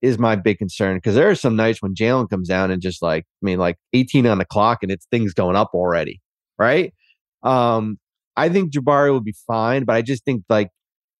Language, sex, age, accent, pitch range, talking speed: English, male, 30-49, American, 110-135 Hz, 225 wpm